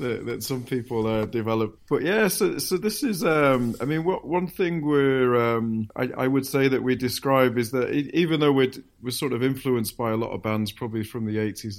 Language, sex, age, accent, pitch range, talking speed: English, male, 30-49, British, 110-130 Hz, 240 wpm